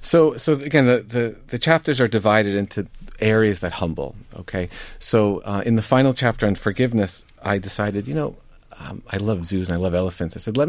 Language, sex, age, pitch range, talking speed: English, male, 40-59, 95-120 Hz, 210 wpm